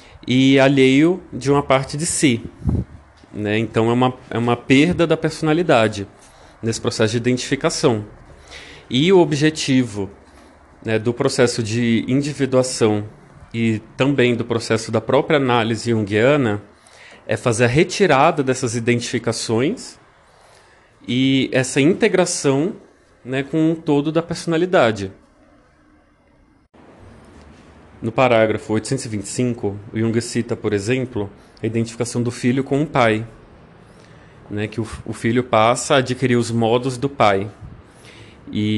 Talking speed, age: 120 wpm, 30-49